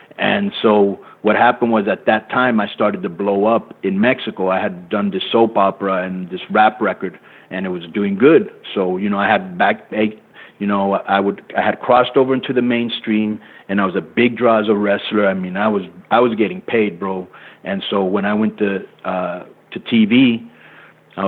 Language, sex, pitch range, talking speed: English, male, 100-120 Hz, 210 wpm